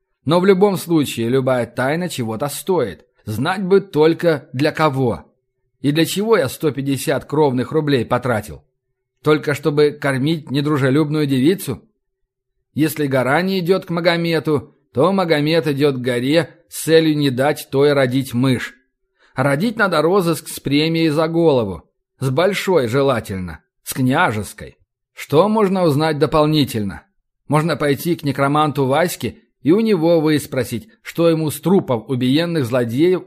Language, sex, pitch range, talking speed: Russian, male, 130-160 Hz, 135 wpm